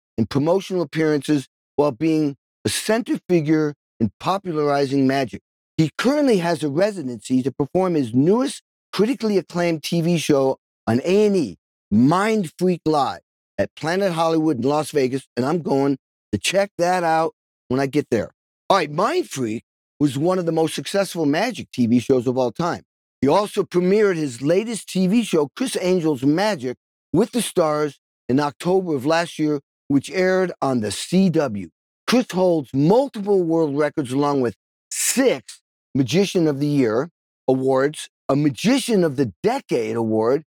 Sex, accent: male, American